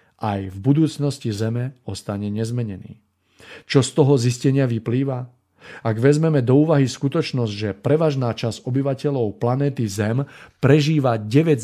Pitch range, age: 110-140 Hz, 40-59